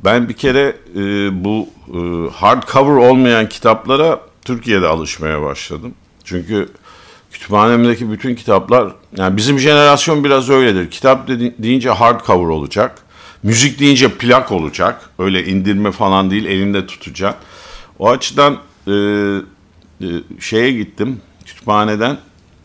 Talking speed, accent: 115 wpm, native